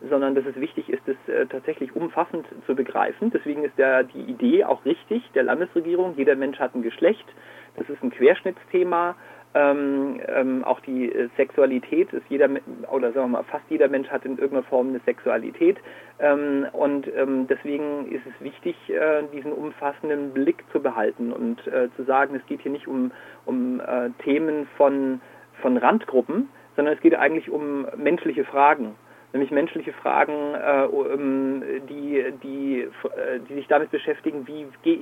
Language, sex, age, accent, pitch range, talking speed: German, male, 40-59, German, 135-165 Hz, 165 wpm